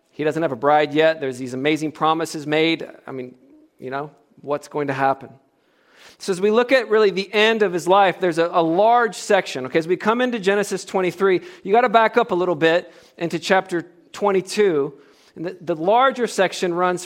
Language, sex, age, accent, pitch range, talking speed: English, male, 40-59, American, 140-195 Hz, 210 wpm